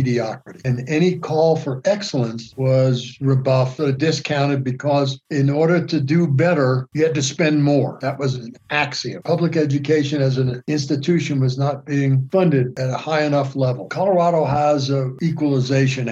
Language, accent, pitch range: English, American, 130-155 Hz